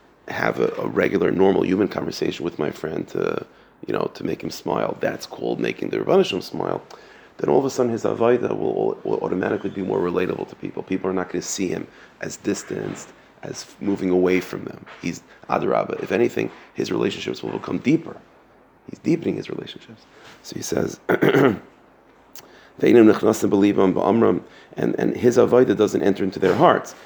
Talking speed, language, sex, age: 170 wpm, English, male, 40-59